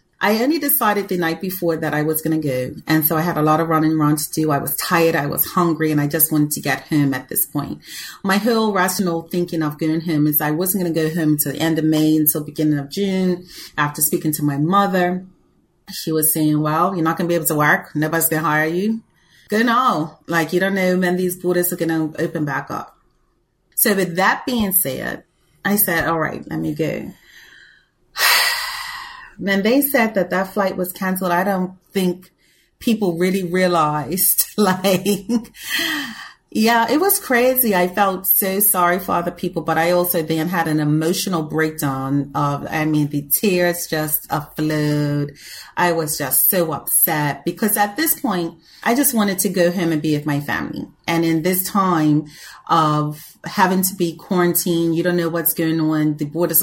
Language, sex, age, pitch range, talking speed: English, female, 30-49, 155-185 Hz, 200 wpm